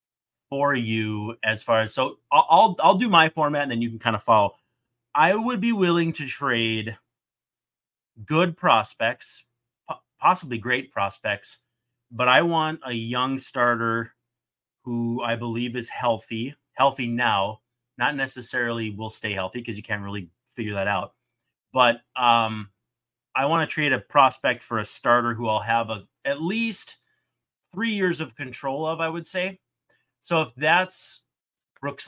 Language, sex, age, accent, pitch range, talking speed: English, male, 30-49, American, 115-150 Hz, 155 wpm